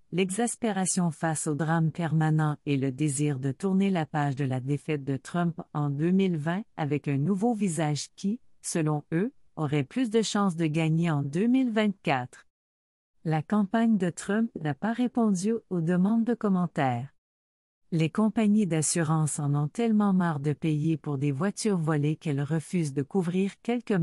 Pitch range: 150-195 Hz